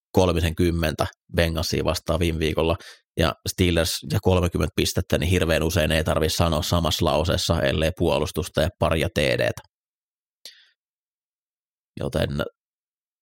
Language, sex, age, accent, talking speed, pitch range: Finnish, male, 30-49, native, 110 wpm, 80-95 Hz